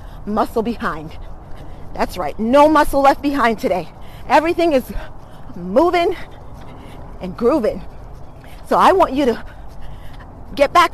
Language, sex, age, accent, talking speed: English, female, 40-59, American, 115 wpm